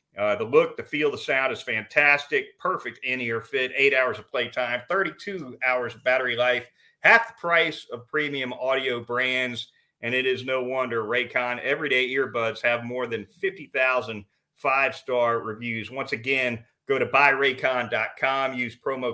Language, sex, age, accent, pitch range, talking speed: English, male, 40-59, American, 120-145 Hz, 155 wpm